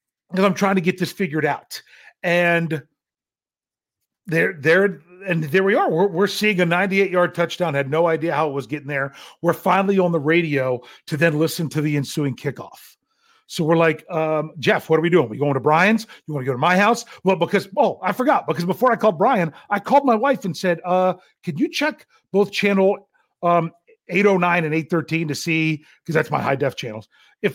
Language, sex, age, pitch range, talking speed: English, male, 40-59, 155-200 Hz, 220 wpm